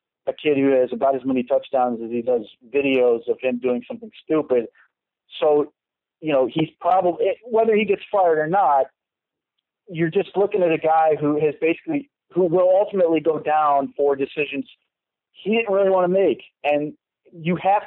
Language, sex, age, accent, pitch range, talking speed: English, male, 40-59, American, 140-180 Hz, 180 wpm